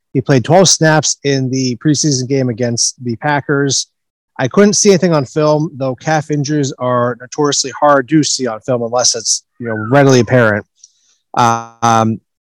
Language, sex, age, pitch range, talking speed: English, male, 30-49, 125-150 Hz, 165 wpm